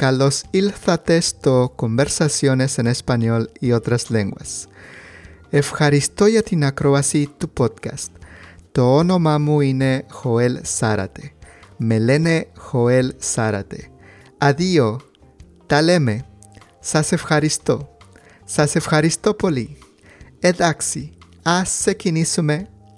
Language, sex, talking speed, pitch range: English, male, 40 wpm, 115-155 Hz